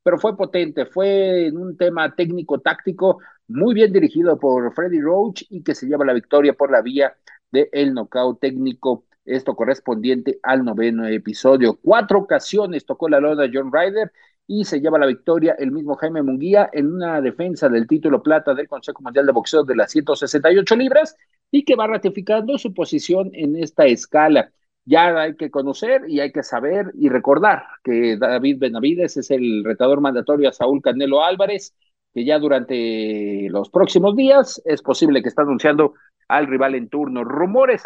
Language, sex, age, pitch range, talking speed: Spanish, male, 50-69, 135-195 Hz, 175 wpm